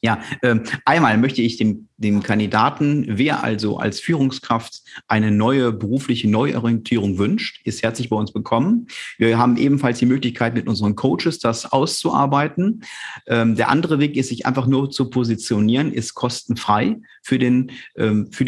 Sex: male